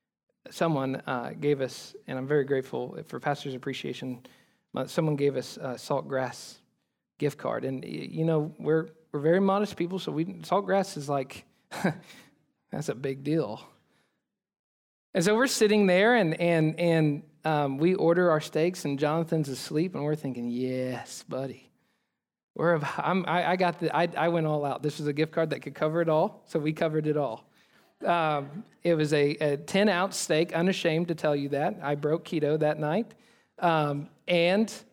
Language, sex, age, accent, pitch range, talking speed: English, male, 40-59, American, 140-170 Hz, 175 wpm